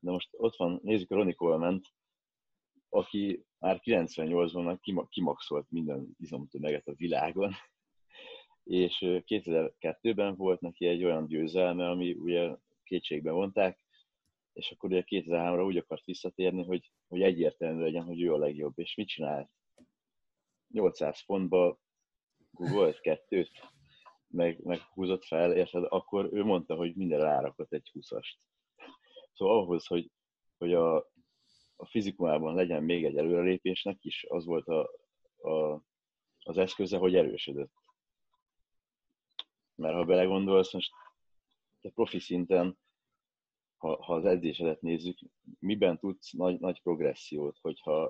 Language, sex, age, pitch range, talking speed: Hungarian, male, 30-49, 85-110 Hz, 125 wpm